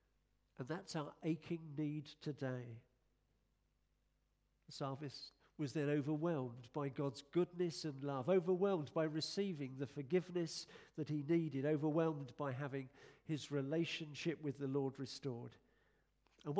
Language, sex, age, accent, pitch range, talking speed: English, male, 50-69, British, 130-160 Hz, 125 wpm